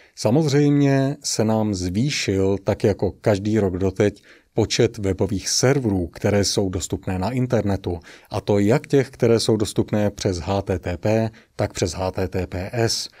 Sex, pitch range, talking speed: male, 100-120 Hz, 130 wpm